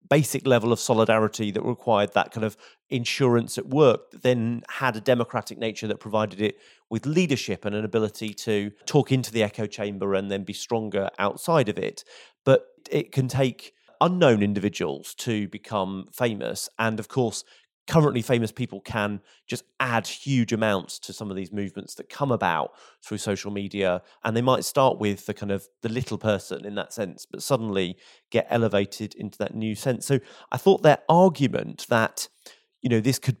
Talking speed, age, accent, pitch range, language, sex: 180 wpm, 30-49, British, 100-125 Hz, English, male